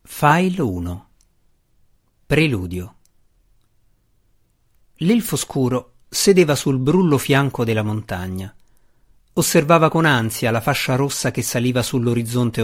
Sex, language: male, Italian